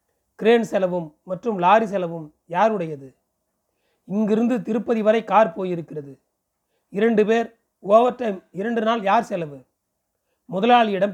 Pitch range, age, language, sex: 165-215 Hz, 40-59, Tamil, male